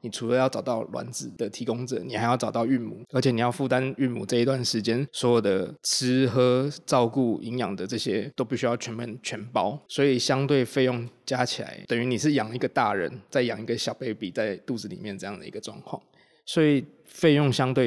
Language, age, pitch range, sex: Chinese, 20-39, 115-135 Hz, male